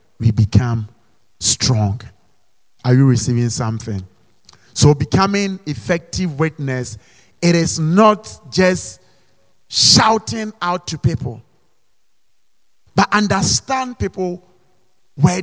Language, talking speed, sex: English, 90 wpm, male